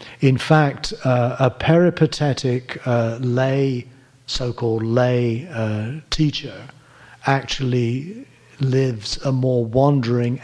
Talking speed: 90 wpm